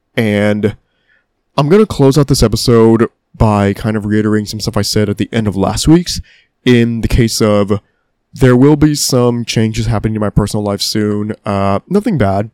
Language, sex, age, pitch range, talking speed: English, male, 20-39, 105-130 Hz, 185 wpm